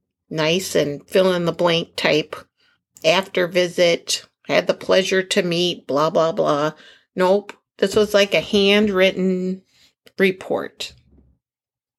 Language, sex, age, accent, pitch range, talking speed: English, female, 50-69, American, 175-220 Hz, 120 wpm